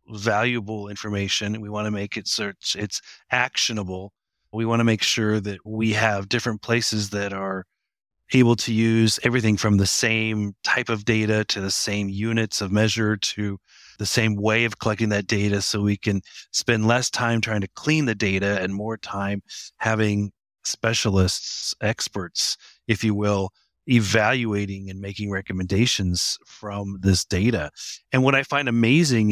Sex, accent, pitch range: male, American, 100-120 Hz